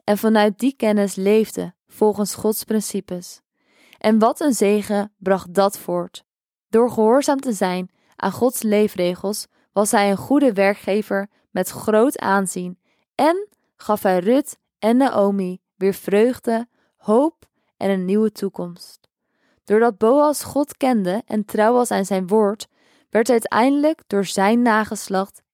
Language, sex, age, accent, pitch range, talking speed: Dutch, female, 20-39, Dutch, 195-235 Hz, 135 wpm